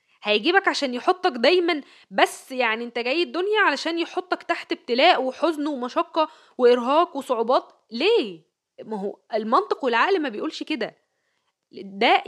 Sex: female